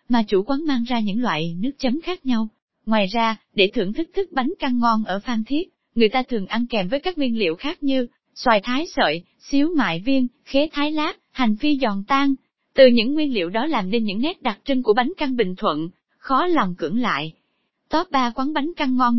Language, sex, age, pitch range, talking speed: Vietnamese, female, 20-39, 215-285 Hz, 230 wpm